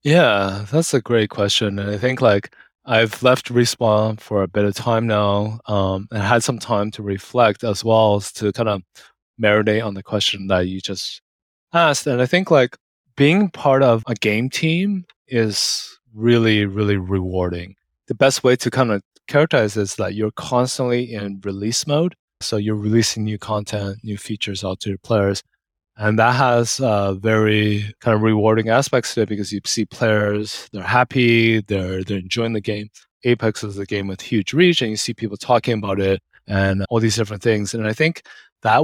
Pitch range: 100-120 Hz